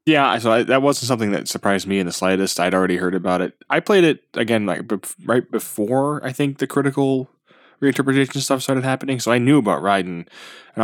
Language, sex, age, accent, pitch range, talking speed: English, male, 10-29, American, 95-130 Hz, 215 wpm